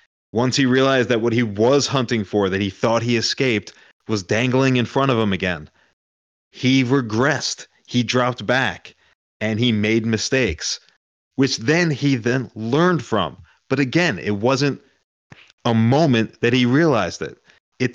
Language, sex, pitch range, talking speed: English, male, 105-135 Hz, 155 wpm